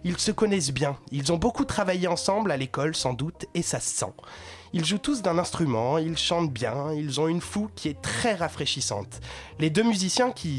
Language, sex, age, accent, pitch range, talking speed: French, male, 30-49, French, 140-200 Hz, 210 wpm